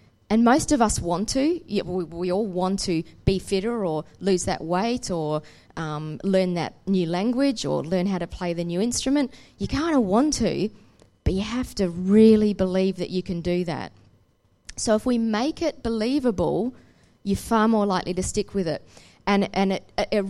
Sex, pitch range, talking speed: female, 170-220 Hz, 190 wpm